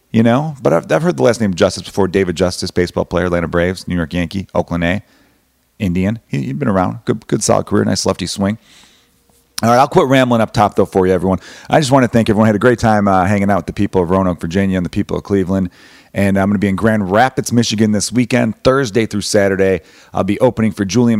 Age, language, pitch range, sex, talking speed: 30-49, English, 90-110 Hz, male, 255 wpm